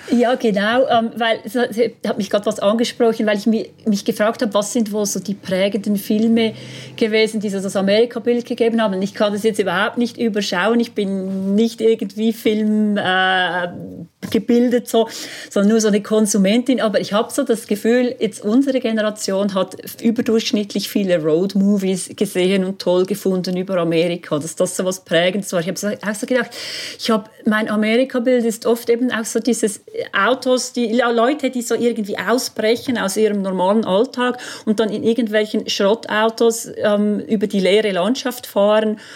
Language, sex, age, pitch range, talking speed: German, female, 40-59, 195-230 Hz, 180 wpm